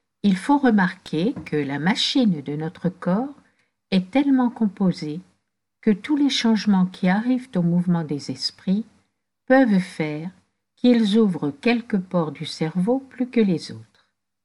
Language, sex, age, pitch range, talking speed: French, female, 60-79, 150-225 Hz, 140 wpm